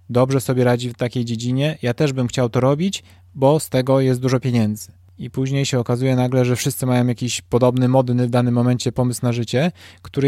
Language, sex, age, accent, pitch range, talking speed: Polish, male, 20-39, native, 120-140 Hz, 210 wpm